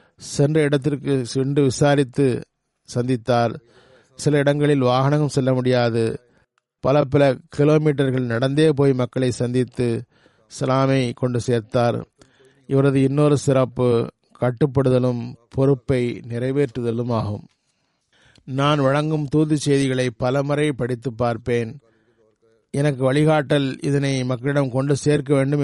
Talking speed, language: 85 wpm, Tamil